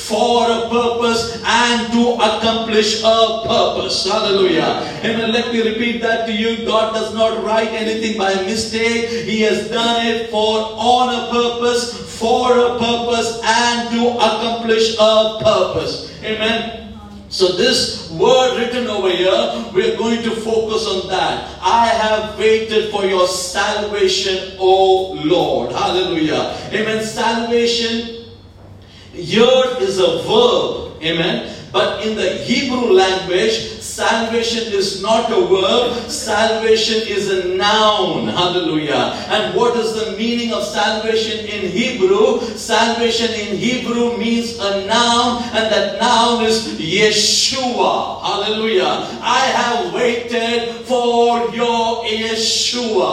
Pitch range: 210-235 Hz